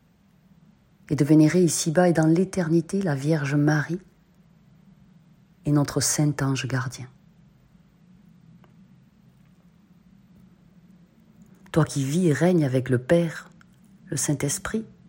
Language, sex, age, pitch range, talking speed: French, female, 40-59, 135-185 Hz, 90 wpm